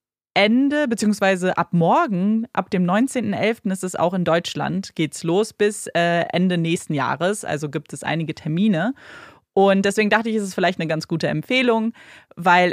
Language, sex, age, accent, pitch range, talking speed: German, female, 20-39, German, 165-205 Hz, 170 wpm